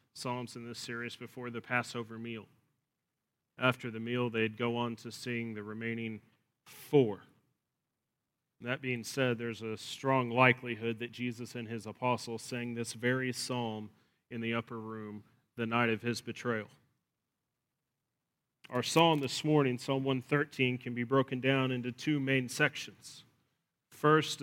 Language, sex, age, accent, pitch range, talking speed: English, male, 30-49, American, 115-135 Hz, 145 wpm